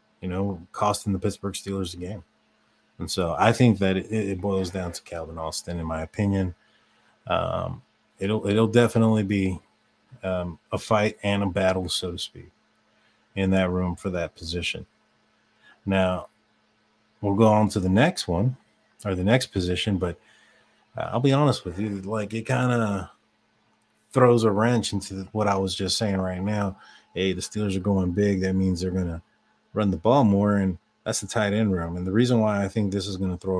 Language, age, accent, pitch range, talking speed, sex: English, 30-49, American, 95-110 Hz, 195 wpm, male